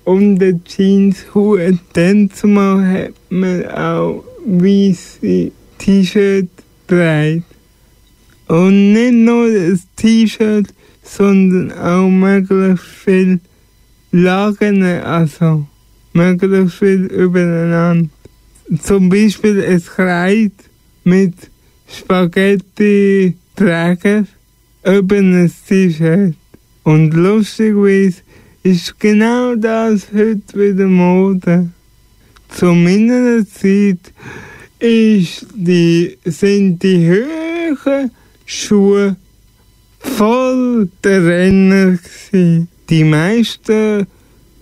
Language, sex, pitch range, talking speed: German, male, 175-205 Hz, 85 wpm